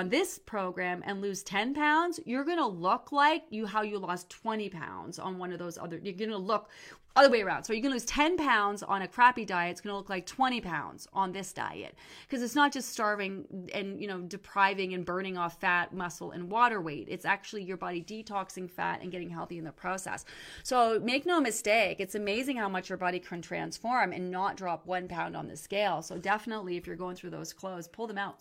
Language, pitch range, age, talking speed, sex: English, 190-275 Hz, 30-49, 225 wpm, female